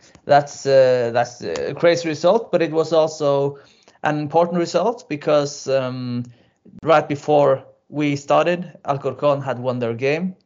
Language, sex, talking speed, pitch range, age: English, male, 140 wpm, 130-165 Hz, 30-49